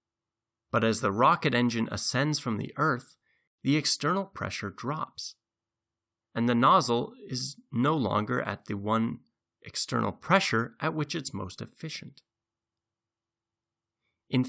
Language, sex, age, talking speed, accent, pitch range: English, male, 30-49, 125 wpm, American, 110-140 Hz